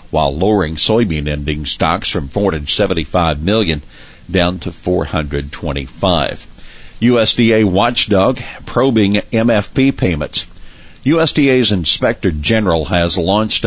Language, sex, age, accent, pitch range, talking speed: English, male, 50-69, American, 80-100 Hz, 90 wpm